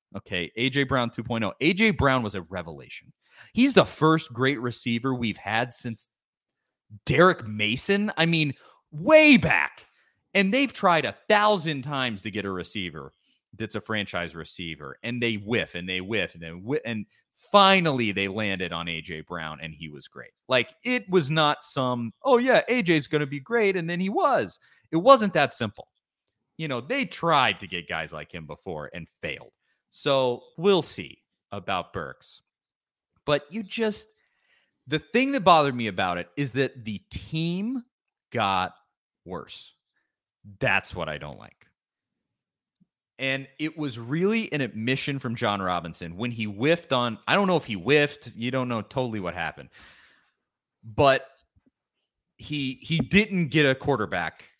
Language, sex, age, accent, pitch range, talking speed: English, male, 30-49, American, 105-165 Hz, 160 wpm